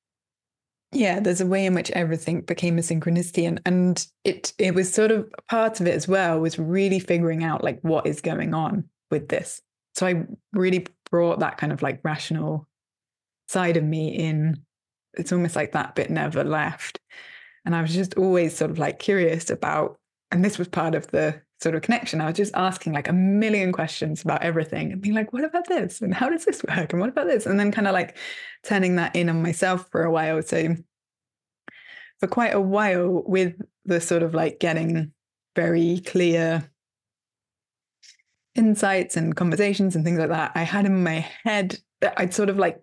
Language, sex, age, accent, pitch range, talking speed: English, female, 20-39, British, 165-195 Hz, 195 wpm